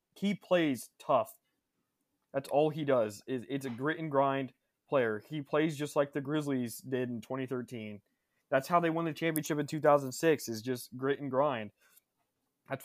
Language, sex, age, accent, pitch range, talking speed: English, male, 20-39, American, 120-145 Hz, 175 wpm